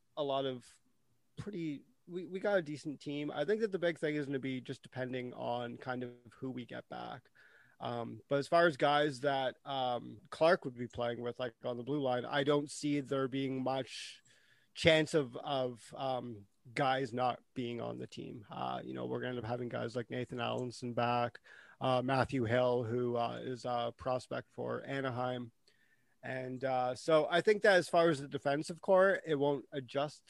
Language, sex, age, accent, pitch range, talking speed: English, male, 30-49, American, 125-145 Hz, 200 wpm